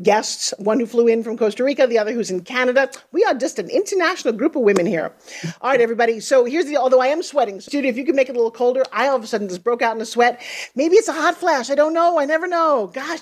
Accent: American